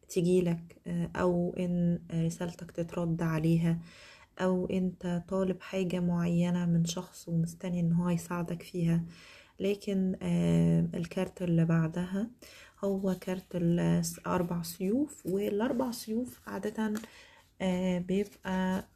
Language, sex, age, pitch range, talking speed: Arabic, female, 20-39, 175-200 Hz, 90 wpm